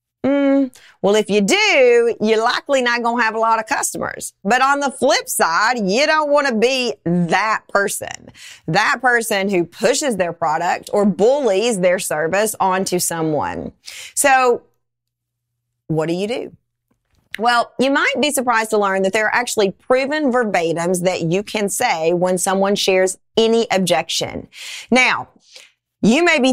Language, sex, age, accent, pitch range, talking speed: English, female, 30-49, American, 180-235 Hz, 160 wpm